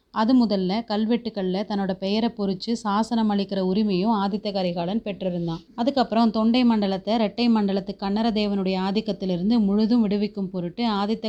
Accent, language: native, Tamil